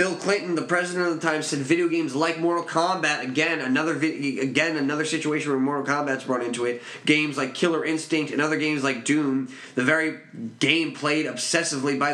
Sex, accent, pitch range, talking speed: male, American, 135-160 Hz, 200 wpm